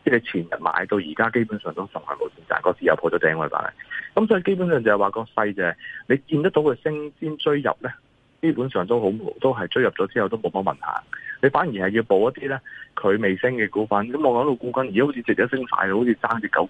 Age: 30-49